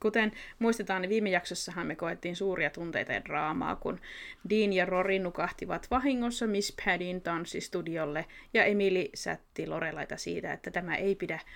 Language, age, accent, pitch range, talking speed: Finnish, 20-39, native, 180-230 Hz, 145 wpm